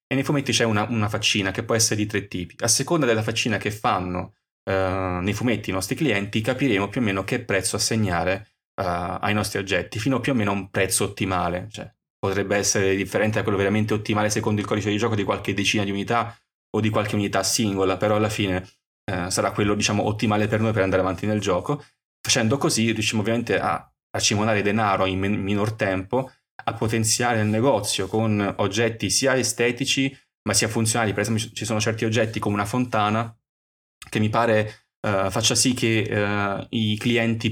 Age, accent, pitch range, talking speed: 20-39, native, 100-115 Hz, 195 wpm